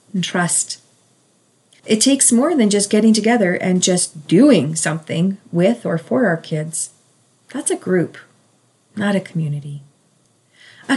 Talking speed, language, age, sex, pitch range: 135 wpm, English, 40-59, female, 170-220 Hz